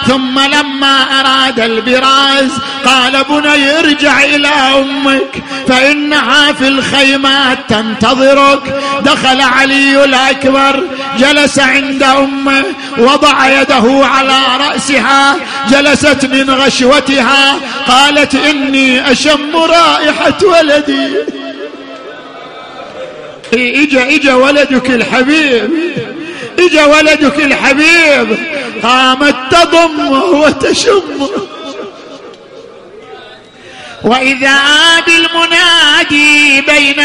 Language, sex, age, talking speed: Arabic, male, 50-69, 70 wpm